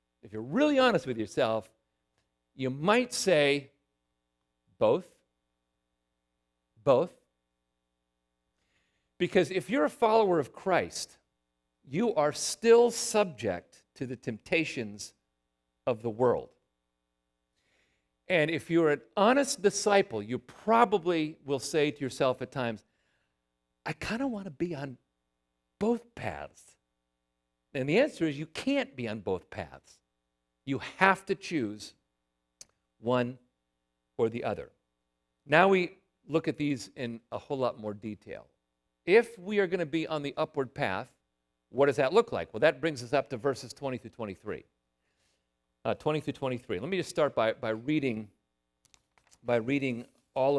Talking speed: 135 wpm